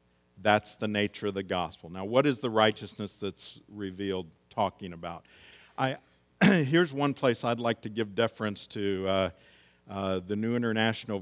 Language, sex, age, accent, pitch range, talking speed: English, male, 50-69, American, 85-110 Hz, 160 wpm